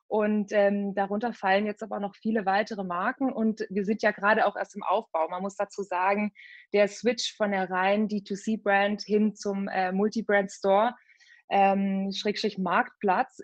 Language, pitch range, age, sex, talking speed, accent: English, 200-235 Hz, 20-39, female, 160 wpm, German